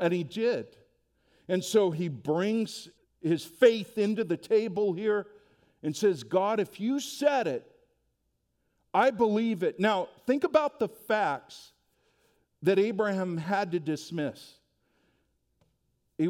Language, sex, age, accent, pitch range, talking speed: English, male, 50-69, American, 150-205 Hz, 125 wpm